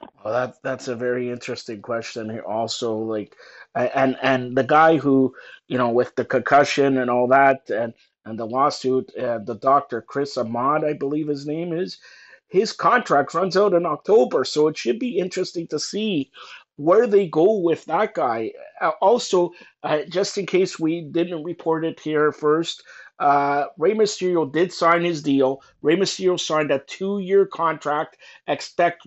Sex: male